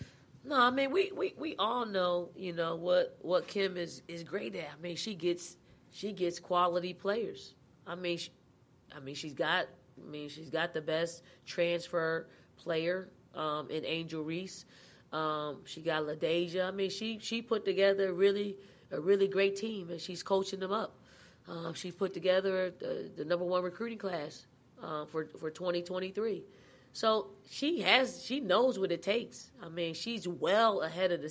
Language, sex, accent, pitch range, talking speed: English, female, American, 160-195 Hz, 185 wpm